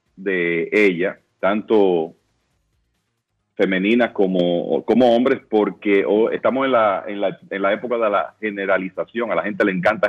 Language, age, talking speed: Spanish, 40-59, 150 wpm